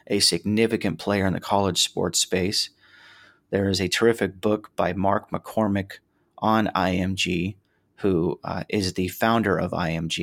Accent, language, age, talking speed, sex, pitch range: American, English, 30-49, 145 wpm, male, 90-105 Hz